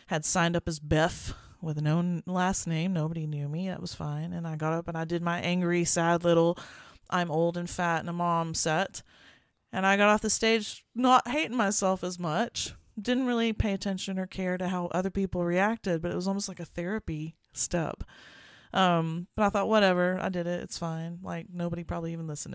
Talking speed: 215 wpm